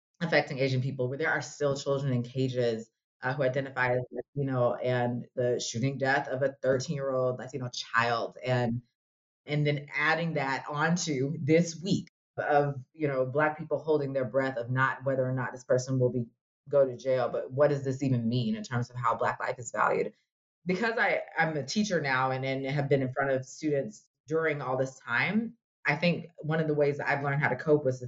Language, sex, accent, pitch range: English, female, American, 125-145 Hz